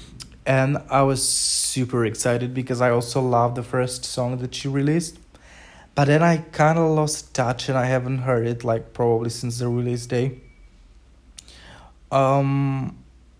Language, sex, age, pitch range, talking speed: English, male, 20-39, 100-125 Hz, 150 wpm